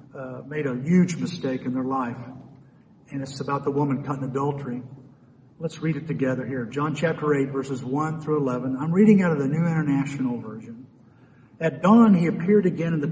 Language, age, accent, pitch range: English, 50-69, American, 130-165 Hz